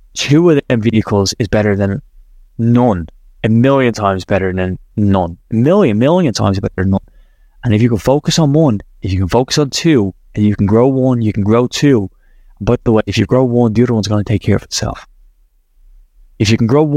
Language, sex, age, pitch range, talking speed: English, male, 20-39, 100-145 Hz, 225 wpm